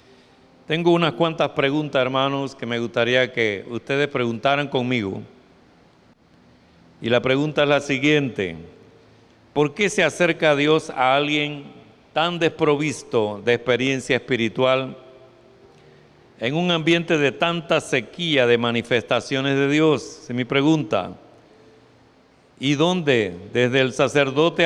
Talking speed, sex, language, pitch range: 115 wpm, male, Spanish, 120-150 Hz